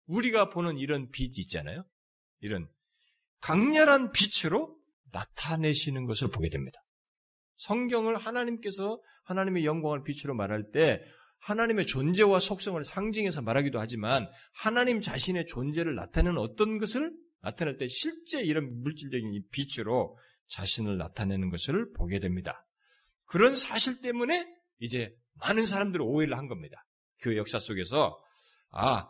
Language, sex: Korean, male